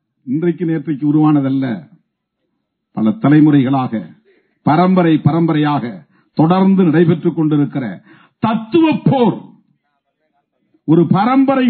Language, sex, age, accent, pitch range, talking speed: Tamil, male, 50-69, native, 145-220 Hz, 70 wpm